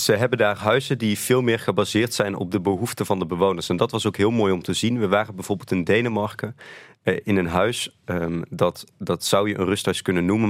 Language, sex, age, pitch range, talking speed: Dutch, male, 30-49, 95-110 Hz, 240 wpm